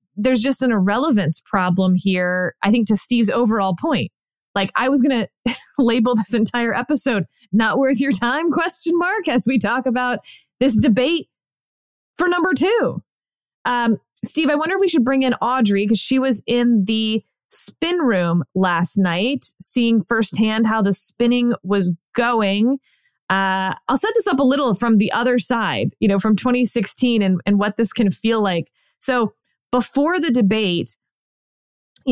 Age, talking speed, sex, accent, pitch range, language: 20-39, 165 wpm, female, American, 205-250 Hz, English